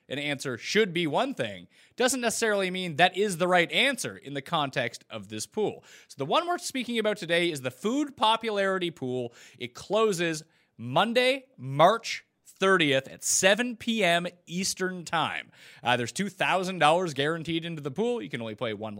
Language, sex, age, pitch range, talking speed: English, male, 30-49, 130-200 Hz, 170 wpm